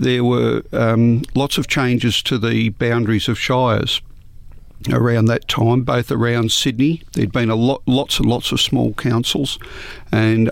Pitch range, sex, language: 110-125 Hz, male, English